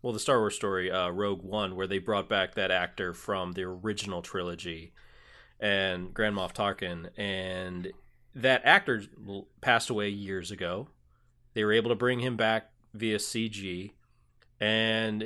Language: English